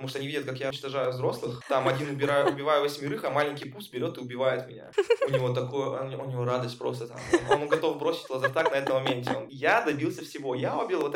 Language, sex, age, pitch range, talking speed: Russian, male, 20-39, 120-135 Hz, 230 wpm